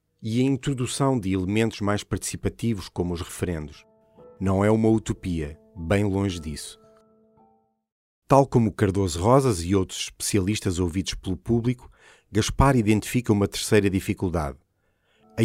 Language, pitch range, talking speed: Portuguese, 95-115 Hz, 130 wpm